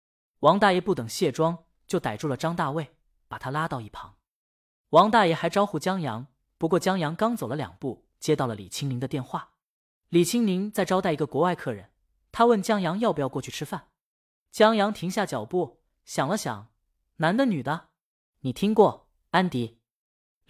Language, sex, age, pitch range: Chinese, female, 20-39, 130-200 Hz